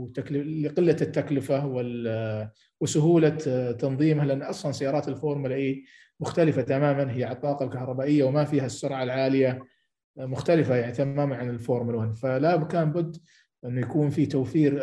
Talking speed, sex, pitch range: 125 wpm, male, 130-150 Hz